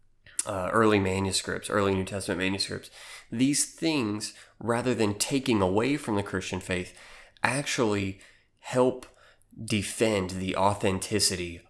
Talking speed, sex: 115 wpm, male